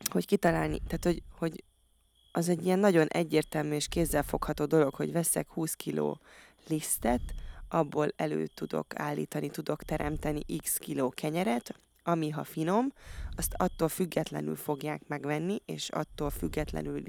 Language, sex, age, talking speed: Hungarian, female, 20-39, 135 wpm